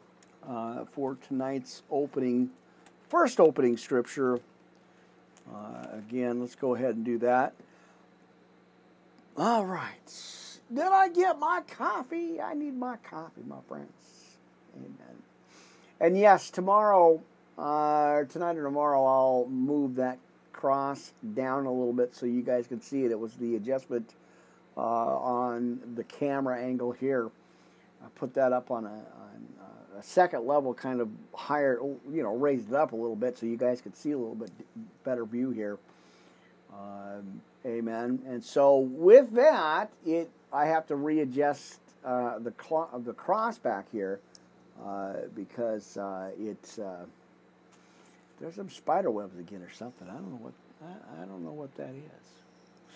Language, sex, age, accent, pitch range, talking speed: English, male, 50-69, American, 115-150 Hz, 150 wpm